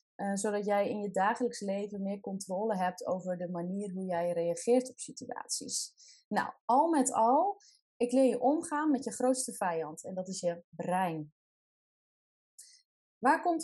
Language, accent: Dutch, Dutch